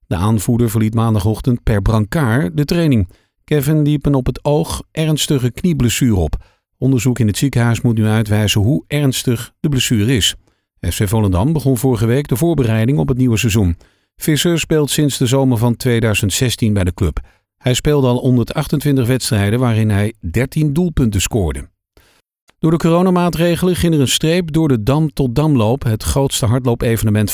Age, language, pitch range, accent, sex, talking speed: 50-69, Dutch, 110-150 Hz, Dutch, male, 165 wpm